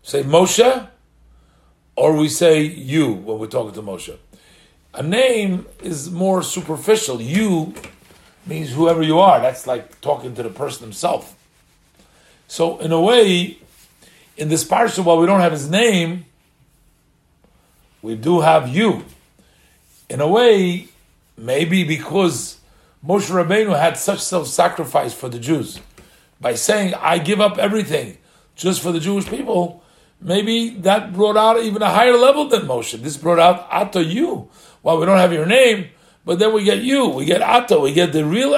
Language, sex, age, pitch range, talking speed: English, male, 50-69, 145-195 Hz, 160 wpm